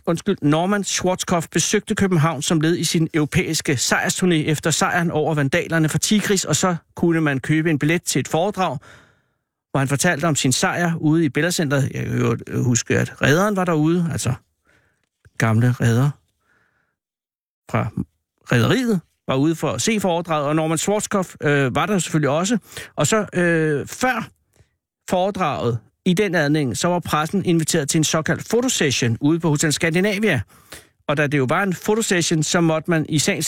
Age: 60-79